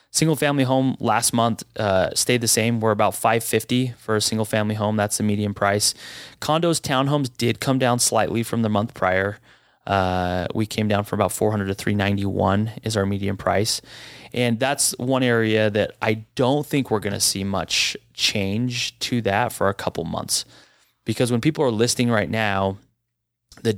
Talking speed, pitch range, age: 175 wpm, 100-115 Hz, 20-39